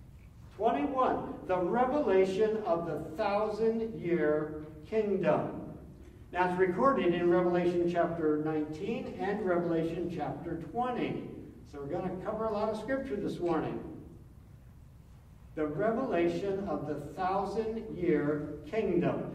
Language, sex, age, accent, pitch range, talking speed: English, male, 60-79, American, 160-210 Hz, 115 wpm